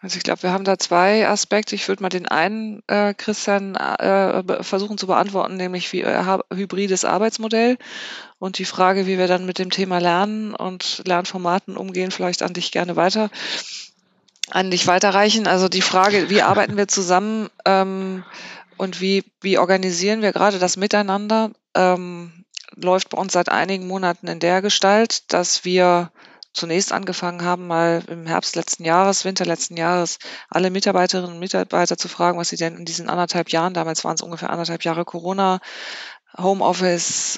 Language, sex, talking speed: German, female, 170 wpm